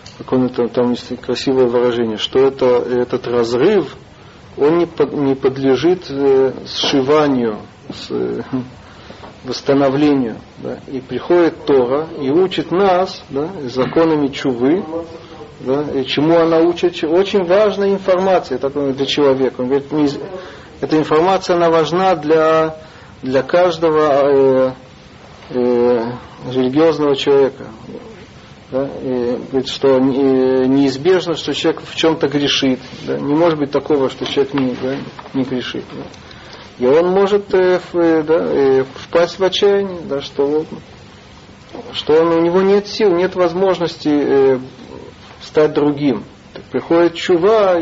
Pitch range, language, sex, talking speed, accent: 130-170 Hz, Russian, male, 120 wpm, native